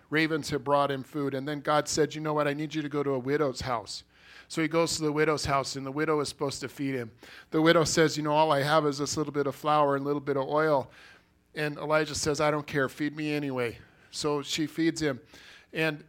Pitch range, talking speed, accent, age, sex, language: 135-155 Hz, 260 wpm, American, 40-59, male, English